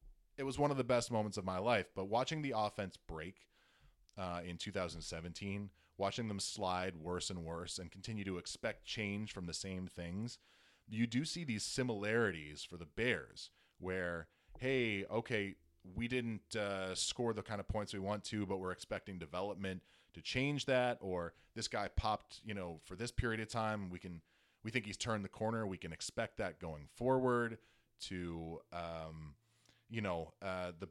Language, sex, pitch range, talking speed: English, male, 90-115 Hz, 180 wpm